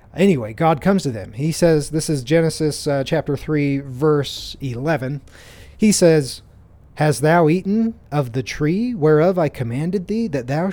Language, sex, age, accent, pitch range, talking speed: English, male, 30-49, American, 115-165 Hz, 160 wpm